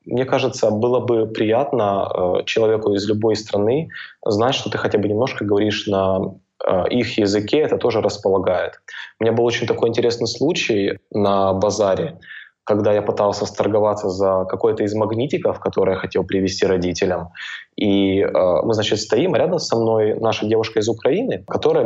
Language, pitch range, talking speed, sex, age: English, 100-115 Hz, 160 wpm, male, 20-39